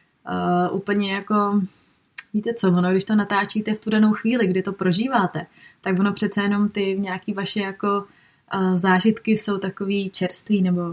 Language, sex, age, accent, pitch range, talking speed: Czech, female, 20-39, native, 190-215 Hz, 165 wpm